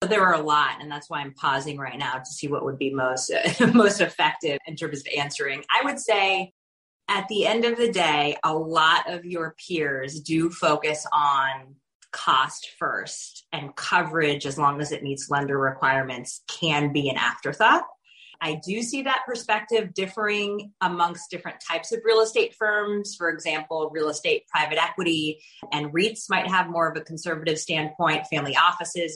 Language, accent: English, American